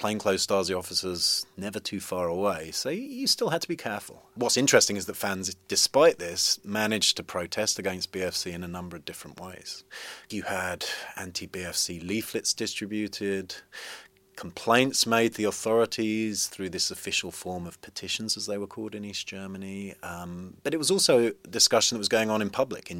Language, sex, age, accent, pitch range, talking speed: English, male, 30-49, British, 90-110 Hz, 180 wpm